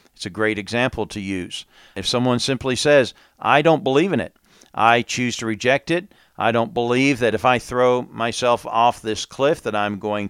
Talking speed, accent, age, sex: 200 wpm, American, 50-69, male